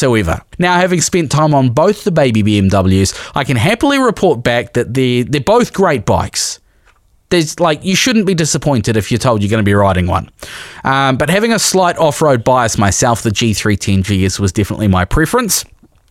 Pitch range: 105-155 Hz